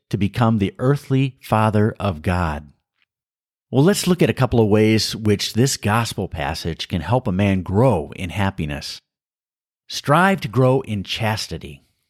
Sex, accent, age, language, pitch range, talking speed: male, American, 50-69, English, 95-135 Hz, 155 wpm